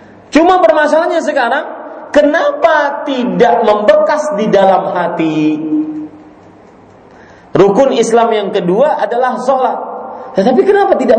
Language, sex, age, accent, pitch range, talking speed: Indonesian, male, 40-59, native, 205-310 Hz, 95 wpm